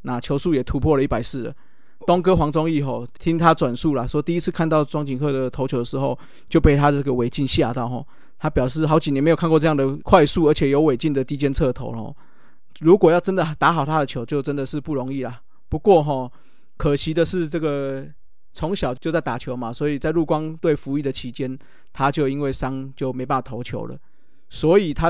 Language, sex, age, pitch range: Chinese, male, 20-39, 130-160 Hz